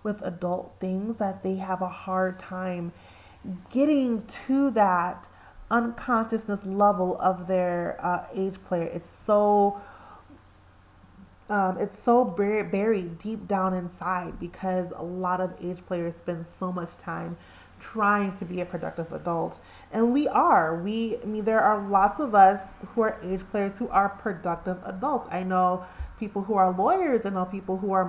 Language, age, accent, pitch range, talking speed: English, 30-49, American, 185-230 Hz, 160 wpm